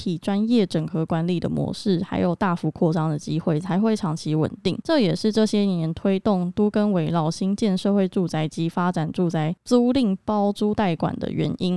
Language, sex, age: Chinese, female, 20-39